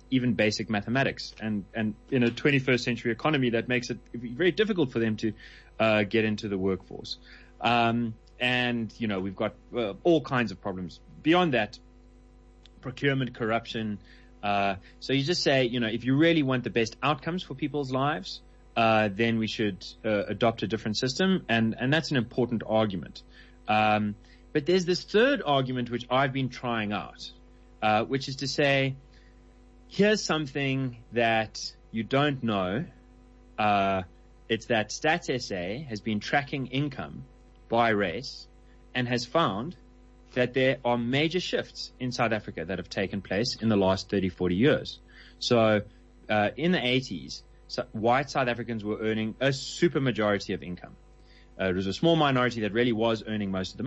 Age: 30-49